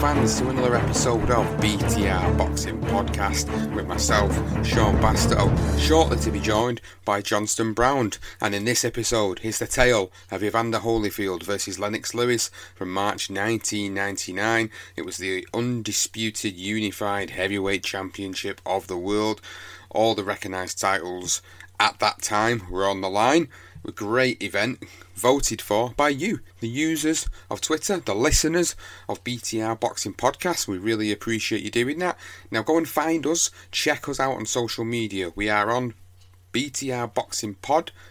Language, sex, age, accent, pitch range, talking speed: English, male, 30-49, British, 95-120 Hz, 150 wpm